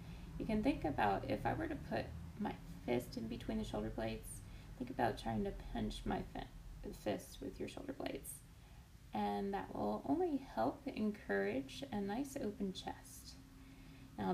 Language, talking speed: English, 160 wpm